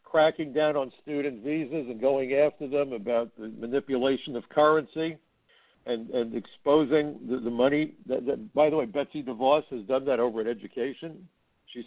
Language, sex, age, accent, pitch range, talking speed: English, male, 60-79, American, 120-145 Hz, 170 wpm